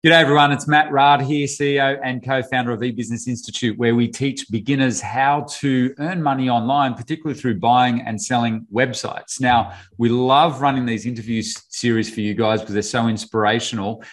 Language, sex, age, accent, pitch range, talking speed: English, male, 40-59, Australian, 115-145 Hz, 175 wpm